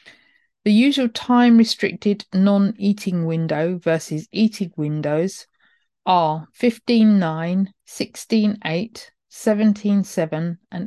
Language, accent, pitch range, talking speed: English, British, 170-220 Hz, 75 wpm